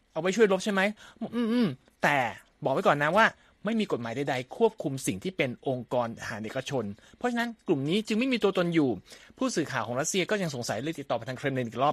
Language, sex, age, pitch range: Thai, male, 20-39, 130-205 Hz